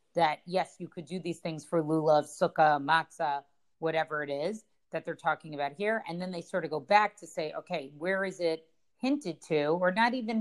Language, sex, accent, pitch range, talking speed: English, female, American, 160-190 Hz, 215 wpm